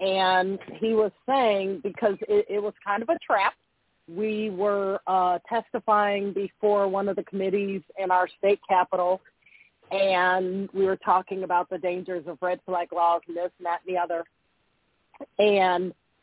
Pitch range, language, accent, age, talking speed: 185-215 Hz, English, American, 40-59, 165 wpm